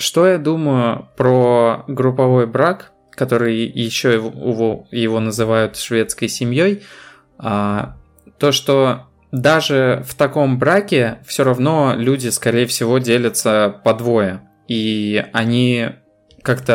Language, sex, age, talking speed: Russian, male, 20-39, 110 wpm